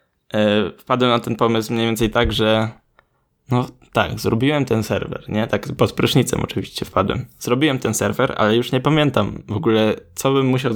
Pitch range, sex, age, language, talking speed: 105-125 Hz, male, 10-29, Polish, 175 wpm